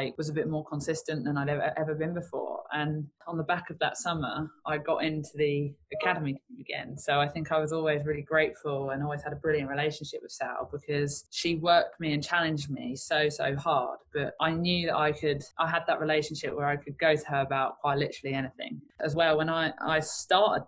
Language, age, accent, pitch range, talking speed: English, 20-39, British, 150-190 Hz, 225 wpm